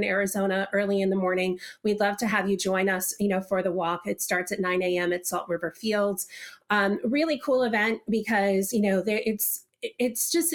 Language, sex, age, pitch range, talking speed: English, female, 30-49, 190-215 Hz, 205 wpm